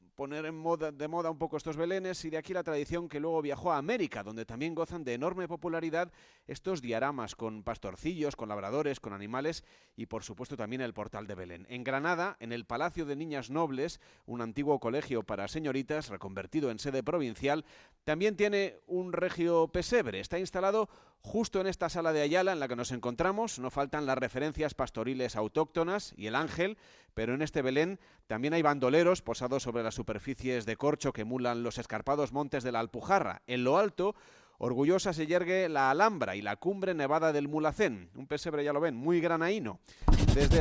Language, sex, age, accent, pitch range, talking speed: Spanish, male, 30-49, Spanish, 125-175 Hz, 190 wpm